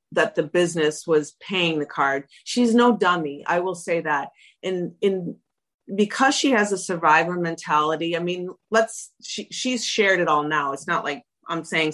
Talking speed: 180 wpm